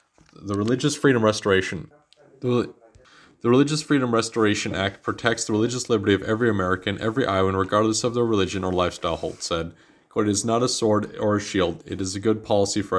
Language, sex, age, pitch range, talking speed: English, male, 30-49, 95-115 Hz, 195 wpm